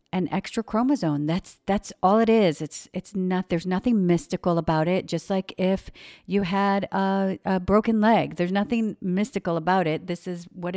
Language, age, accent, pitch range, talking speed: English, 50-69, American, 160-185 Hz, 185 wpm